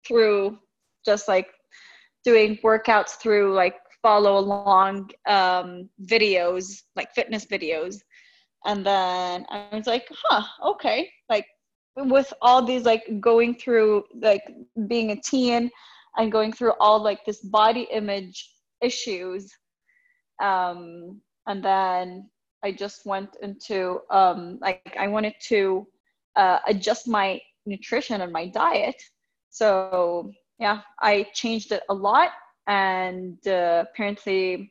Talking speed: 120 wpm